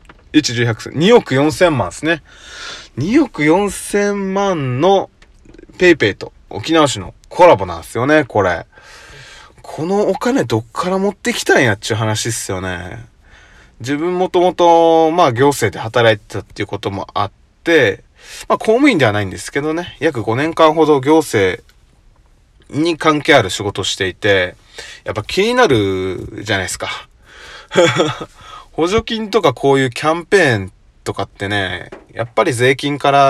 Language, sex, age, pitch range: Japanese, male, 20-39, 110-165 Hz